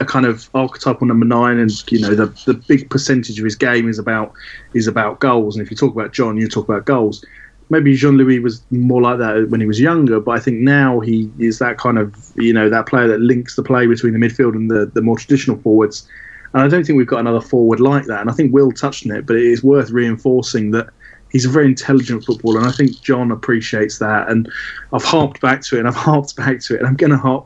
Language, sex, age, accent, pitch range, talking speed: English, male, 20-39, British, 110-135 Hz, 260 wpm